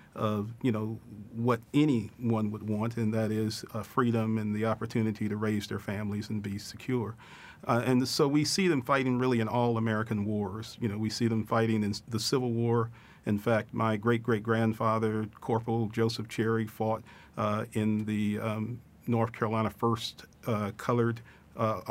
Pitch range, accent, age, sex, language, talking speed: 105-115 Hz, American, 40-59, male, English, 170 wpm